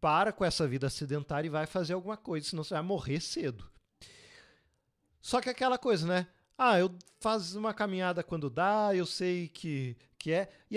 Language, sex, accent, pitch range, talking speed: Portuguese, male, Brazilian, 140-200 Hz, 185 wpm